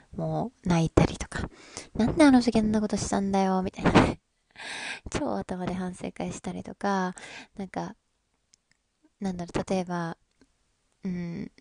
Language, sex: Japanese, female